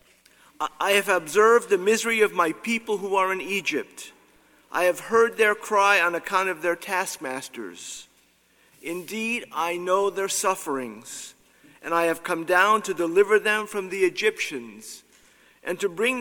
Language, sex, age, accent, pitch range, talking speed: English, male, 50-69, American, 165-215 Hz, 150 wpm